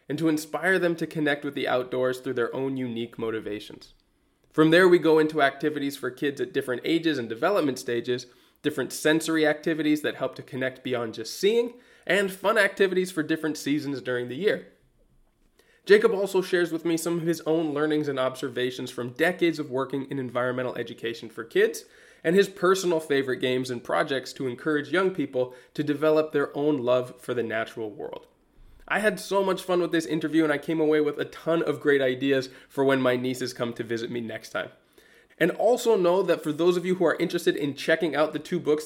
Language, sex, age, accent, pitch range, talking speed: English, male, 20-39, American, 130-165 Hz, 205 wpm